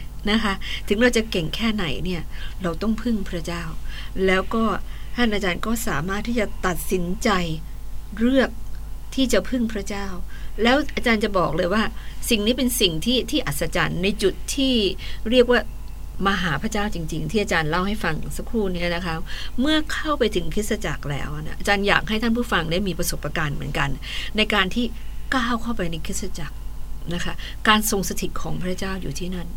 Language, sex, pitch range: English, female, 175-230 Hz